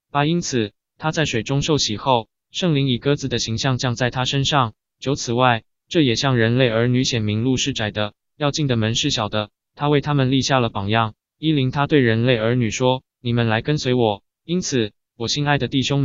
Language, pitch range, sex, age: Chinese, 115-140 Hz, male, 20-39